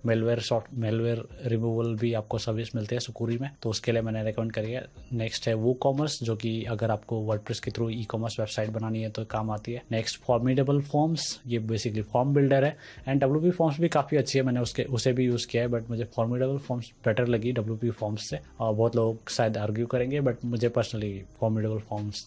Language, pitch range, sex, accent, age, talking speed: Hindi, 110-125 Hz, male, native, 20-39, 220 wpm